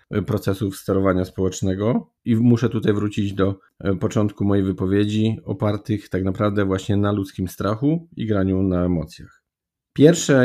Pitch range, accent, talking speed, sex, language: 100-120 Hz, native, 130 wpm, male, Polish